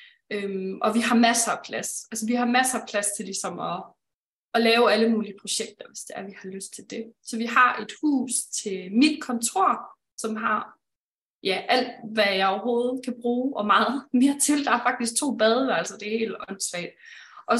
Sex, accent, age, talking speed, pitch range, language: female, native, 20-39, 205 wpm, 210-255 Hz, Danish